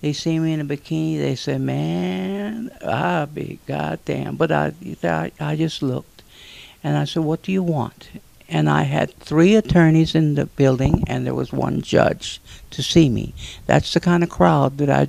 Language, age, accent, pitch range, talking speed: English, 60-79, American, 135-180 Hz, 185 wpm